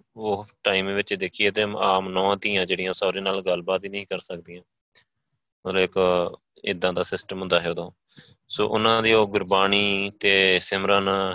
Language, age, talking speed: Punjabi, 20-39, 170 wpm